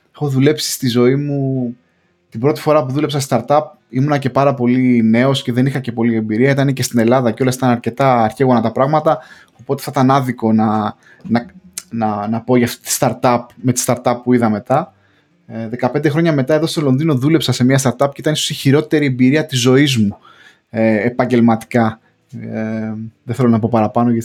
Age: 20-39